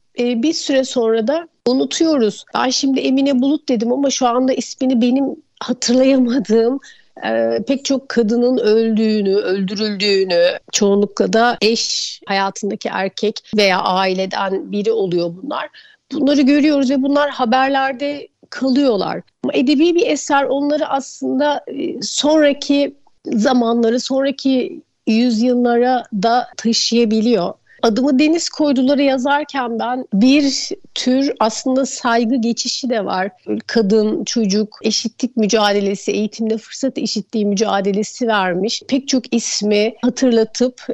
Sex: female